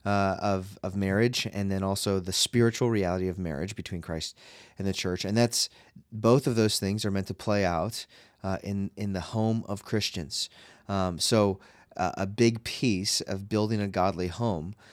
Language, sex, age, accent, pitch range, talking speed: English, male, 30-49, American, 95-110 Hz, 180 wpm